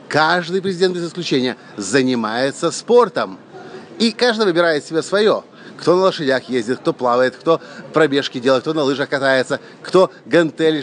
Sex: male